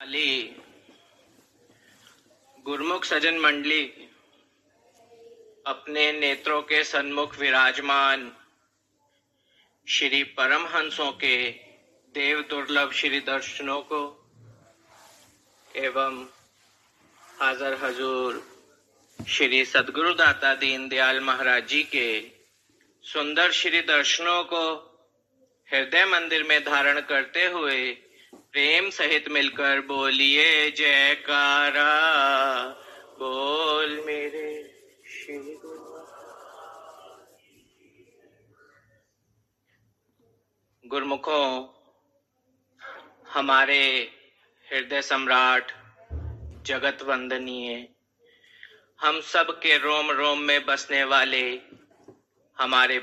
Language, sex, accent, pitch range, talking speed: Hindi, male, native, 130-150 Hz, 70 wpm